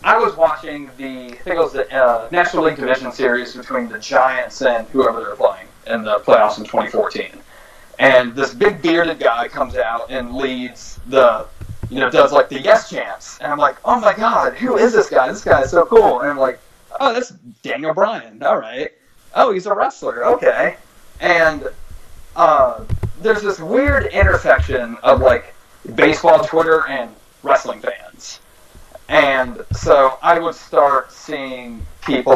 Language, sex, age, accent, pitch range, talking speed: English, male, 30-49, American, 125-170 Hz, 165 wpm